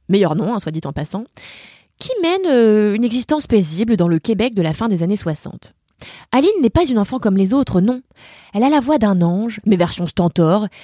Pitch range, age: 180-280 Hz, 20-39